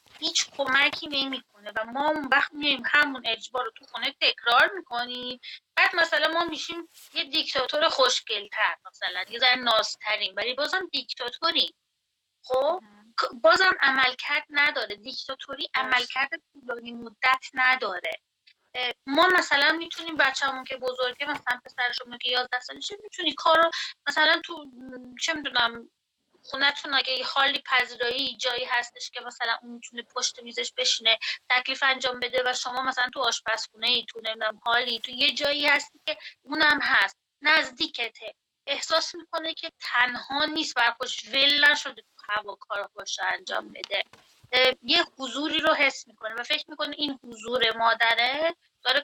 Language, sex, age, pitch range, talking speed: Persian, female, 30-49, 245-305 Hz, 140 wpm